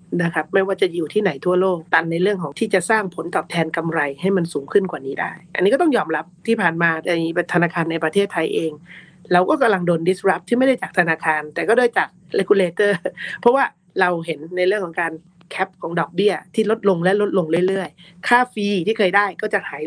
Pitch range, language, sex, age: 170-200 Hz, Thai, female, 30-49